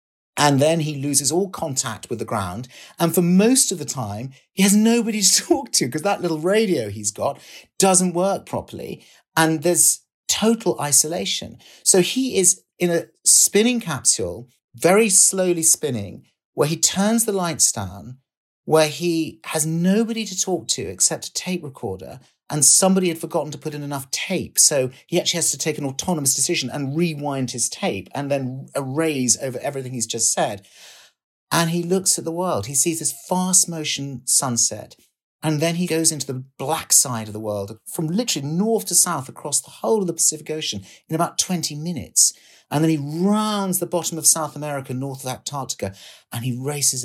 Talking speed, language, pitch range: 185 wpm, English, 130-175 Hz